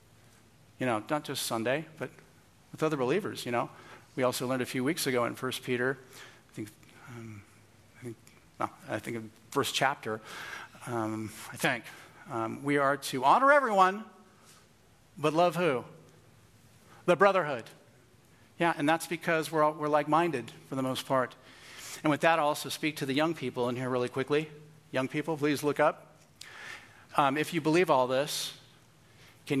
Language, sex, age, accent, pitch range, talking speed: English, male, 50-69, American, 120-145 Hz, 170 wpm